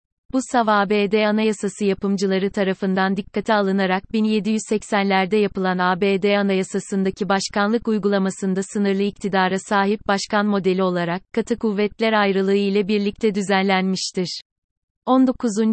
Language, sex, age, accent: Turkish, female, 30-49, native